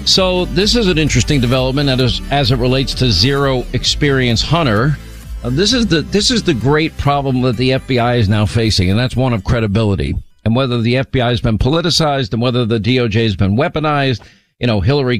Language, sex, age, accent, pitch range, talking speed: English, male, 50-69, American, 120-150 Hz, 200 wpm